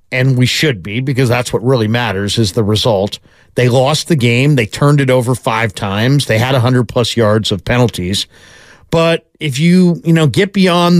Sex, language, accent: male, English, American